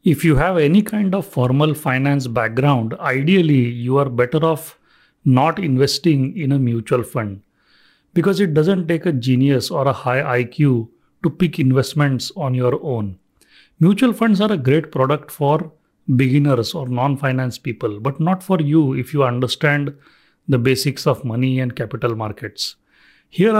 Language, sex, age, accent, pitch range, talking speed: English, male, 40-59, Indian, 125-160 Hz, 160 wpm